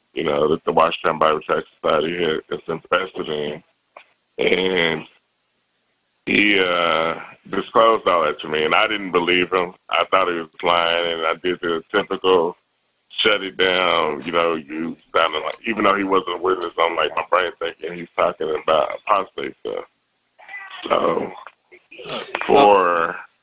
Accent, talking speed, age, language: American, 155 wpm, 30-49, English